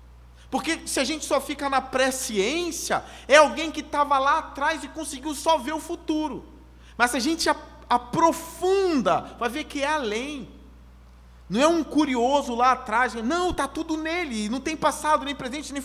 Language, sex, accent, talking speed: Portuguese, male, Brazilian, 175 wpm